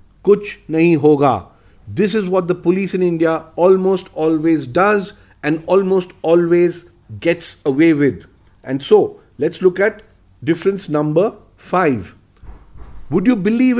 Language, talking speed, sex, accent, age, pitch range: English, 115 wpm, male, Indian, 50-69, 155-215 Hz